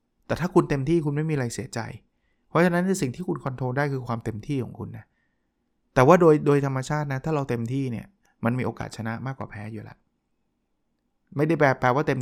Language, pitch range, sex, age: Thai, 115-145 Hz, male, 20-39